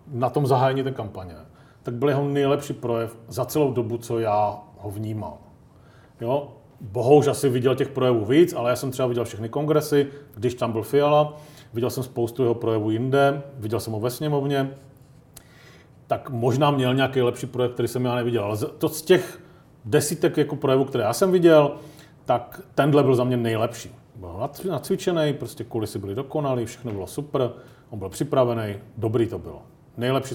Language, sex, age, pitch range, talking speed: Czech, male, 40-59, 115-140 Hz, 170 wpm